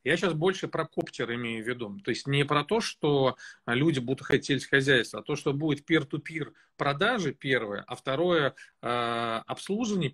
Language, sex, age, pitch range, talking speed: Russian, male, 40-59, 130-165 Hz, 170 wpm